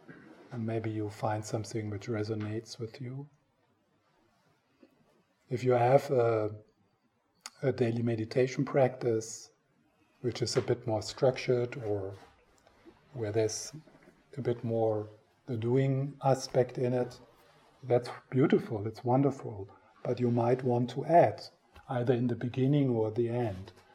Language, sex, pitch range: English, male, 115-130 Hz